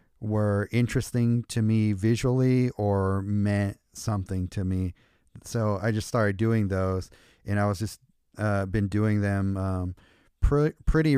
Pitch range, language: 95-110 Hz, English